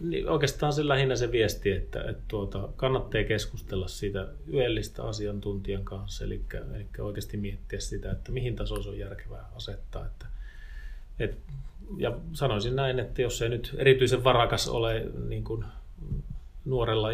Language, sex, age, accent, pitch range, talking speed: Finnish, male, 30-49, native, 100-110 Hz, 145 wpm